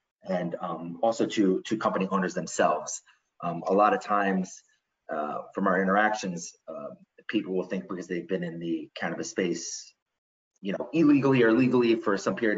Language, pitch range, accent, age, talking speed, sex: English, 95-130 Hz, American, 30-49, 170 wpm, male